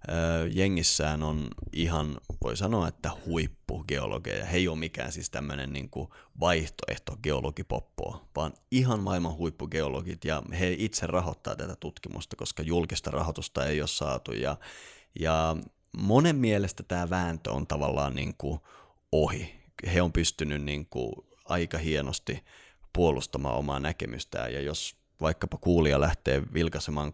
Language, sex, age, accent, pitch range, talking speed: Finnish, male, 30-49, native, 75-90 Hz, 130 wpm